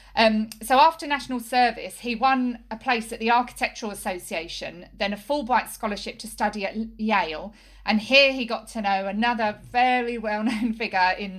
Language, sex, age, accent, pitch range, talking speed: English, female, 40-59, British, 200-240 Hz, 170 wpm